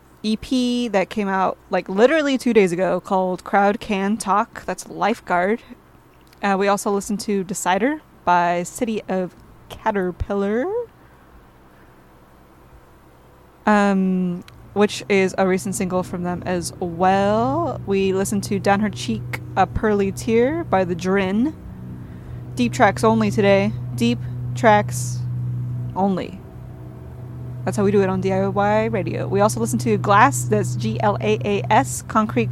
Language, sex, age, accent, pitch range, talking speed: English, female, 20-39, American, 125-210 Hz, 130 wpm